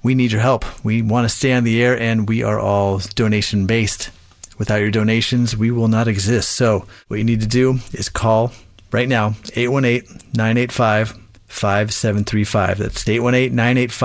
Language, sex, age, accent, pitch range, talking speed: English, male, 30-49, American, 110-150 Hz, 165 wpm